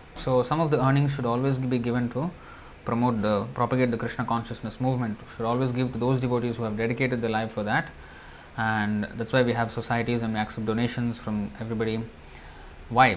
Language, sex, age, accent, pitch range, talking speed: English, male, 20-39, Indian, 110-130 Hz, 195 wpm